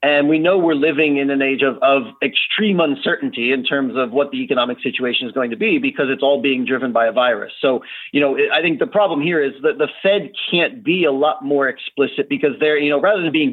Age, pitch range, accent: 30-49, 135-170 Hz, American